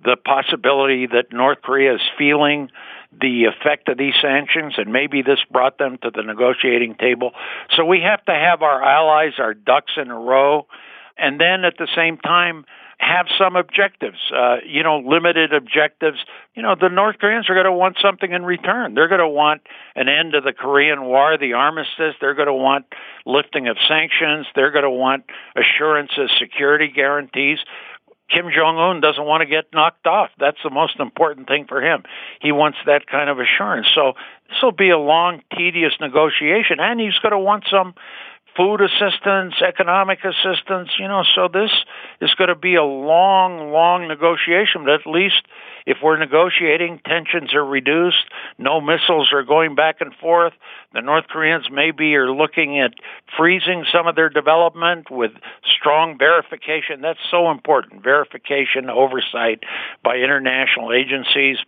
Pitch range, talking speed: 140-175 Hz, 170 wpm